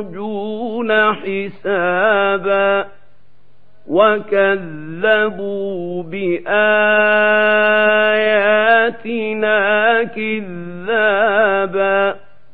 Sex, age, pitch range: male, 50-69, 195-215 Hz